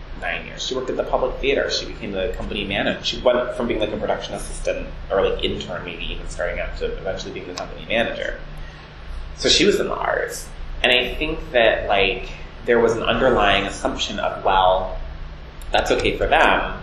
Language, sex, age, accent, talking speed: English, male, 20-39, American, 200 wpm